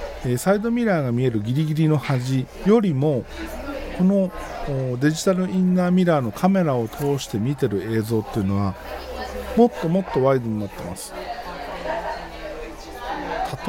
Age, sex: 50-69, male